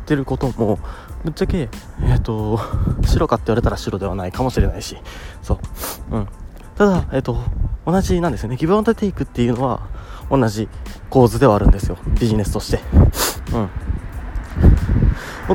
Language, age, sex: Japanese, 20-39, male